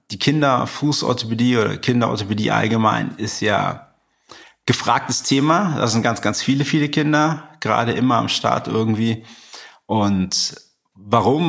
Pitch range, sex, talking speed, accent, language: 100-130 Hz, male, 120 wpm, German, German